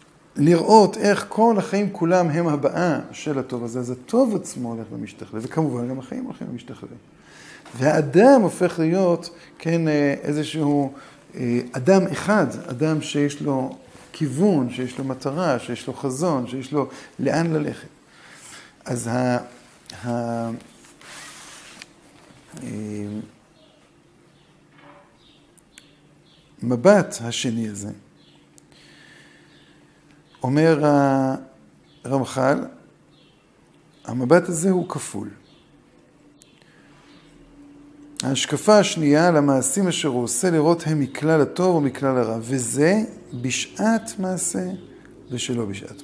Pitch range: 125-180 Hz